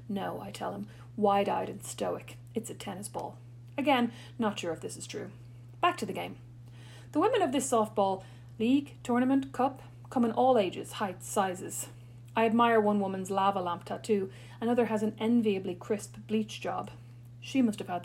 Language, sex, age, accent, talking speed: English, female, 30-49, Irish, 180 wpm